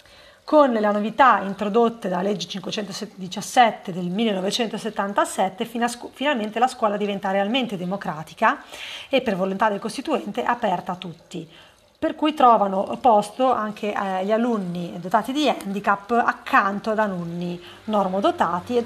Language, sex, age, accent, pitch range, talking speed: Italian, female, 30-49, native, 195-235 Hz, 120 wpm